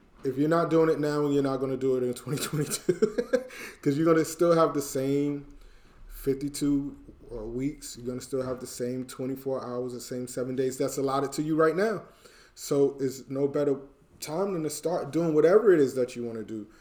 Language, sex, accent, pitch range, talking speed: English, male, American, 120-145 Hz, 215 wpm